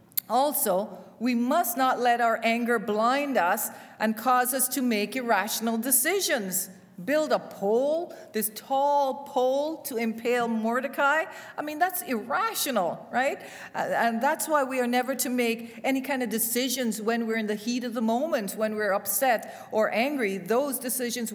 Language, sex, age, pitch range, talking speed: English, female, 40-59, 205-265 Hz, 160 wpm